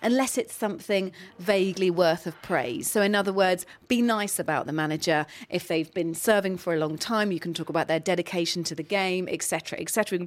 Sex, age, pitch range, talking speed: female, 40-59, 170-220 Hz, 230 wpm